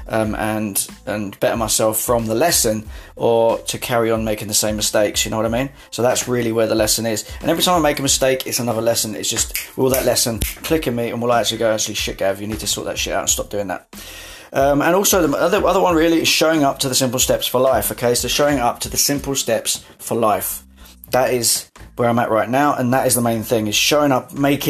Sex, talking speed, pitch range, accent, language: male, 260 wpm, 110-140 Hz, British, English